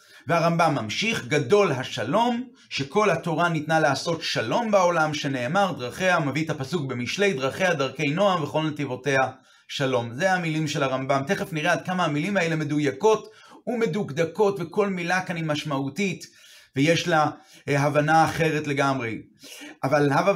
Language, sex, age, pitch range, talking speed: Hebrew, male, 30-49, 145-185 Hz, 140 wpm